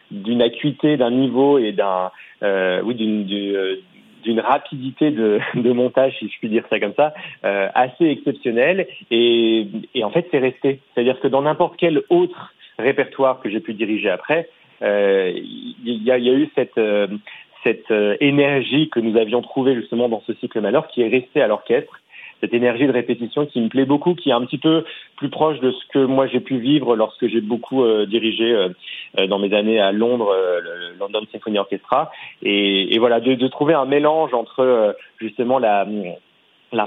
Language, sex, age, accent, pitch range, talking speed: French, male, 40-59, French, 110-145 Hz, 190 wpm